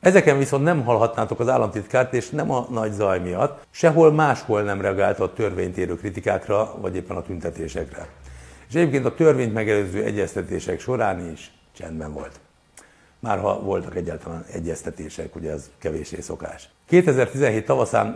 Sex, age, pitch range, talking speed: male, 60-79, 90-125 Hz, 140 wpm